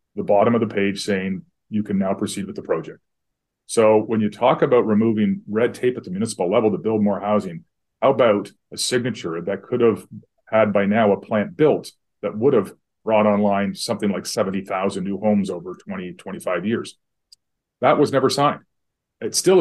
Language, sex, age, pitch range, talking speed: English, male, 40-59, 100-115 Hz, 190 wpm